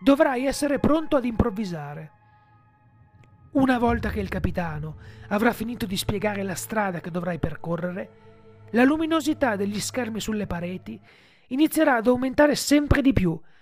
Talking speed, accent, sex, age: 135 wpm, native, male, 30-49